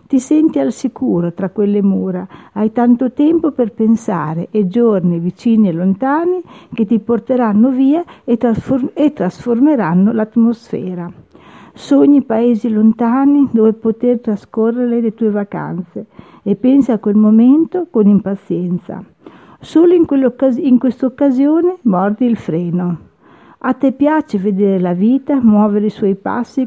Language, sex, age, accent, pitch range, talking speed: Italian, female, 50-69, native, 205-265 Hz, 135 wpm